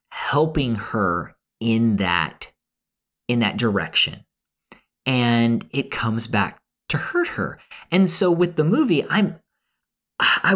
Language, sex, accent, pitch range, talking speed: English, male, American, 110-145 Hz, 120 wpm